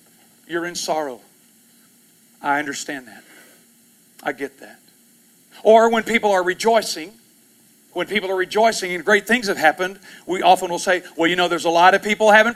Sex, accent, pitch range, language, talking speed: male, American, 175-235 Hz, English, 170 wpm